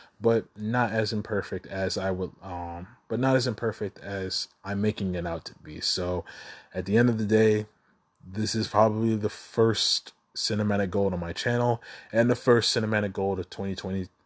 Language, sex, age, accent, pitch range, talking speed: English, male, 20-39, American, 95-110 Hz, 180 wpm